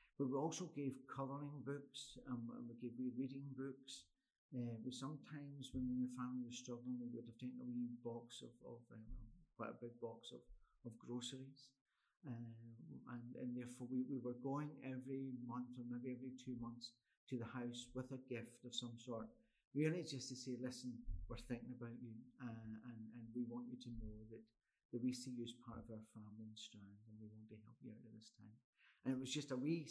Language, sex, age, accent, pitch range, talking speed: English, male, 50-69, British, 115-135 Hz, 215 wpm